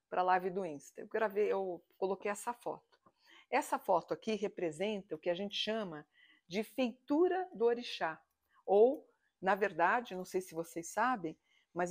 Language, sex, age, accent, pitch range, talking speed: Portuguese, female, 50-69, Brazilian, 175-225 Hz, 165 wpm